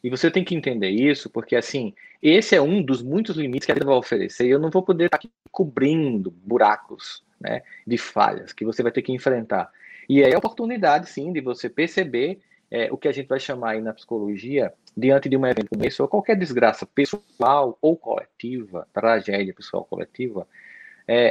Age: 20-39